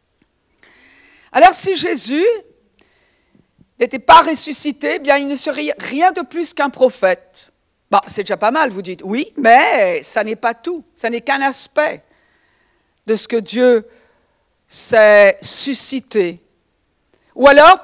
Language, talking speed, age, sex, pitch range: French, 140 wpm, 50-69, female, 235-335 Hz